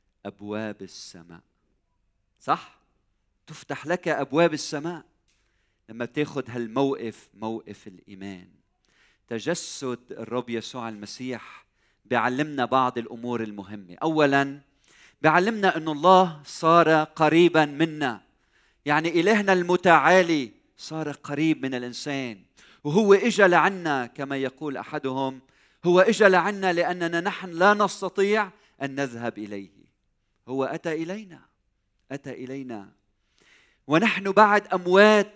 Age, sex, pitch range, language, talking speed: 40-59, male, 110-160 Hz, Arabic, 100 wpm